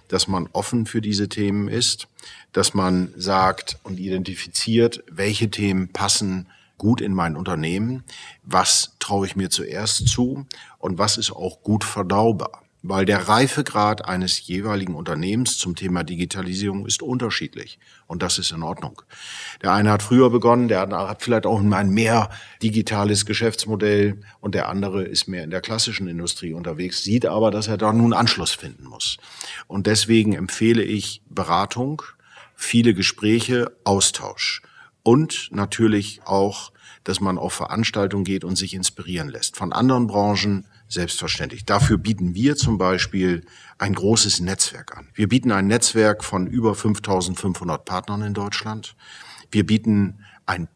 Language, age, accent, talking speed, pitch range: German, 50-69, German, 150 wpm, 95-115 Hz